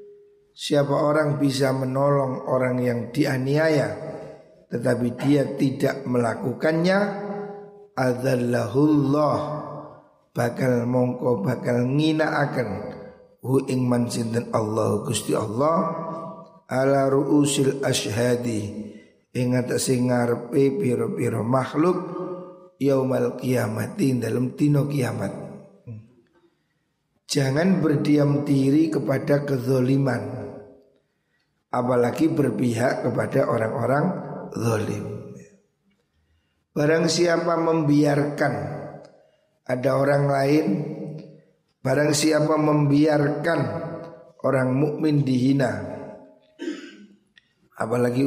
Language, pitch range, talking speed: Indonesian, 125-155 Hz, 75 wpm